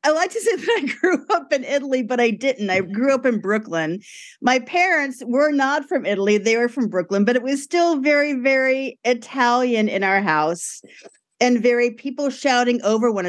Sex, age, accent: female, 40-59, American